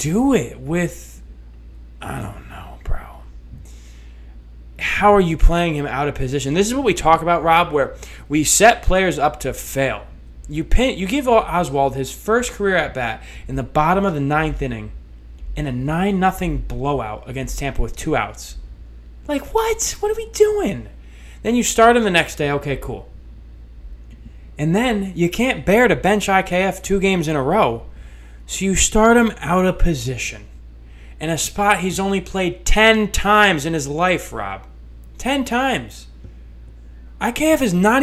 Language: English